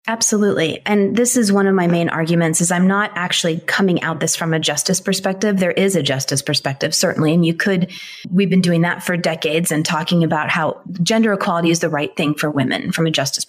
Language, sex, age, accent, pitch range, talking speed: English, female, 30-49, American, 160-195 Hz, 225 wpm